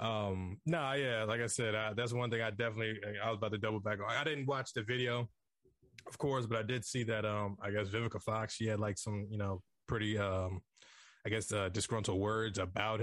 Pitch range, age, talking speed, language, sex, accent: 105-130 Hz, 20-39, 230 wpm, English, male, American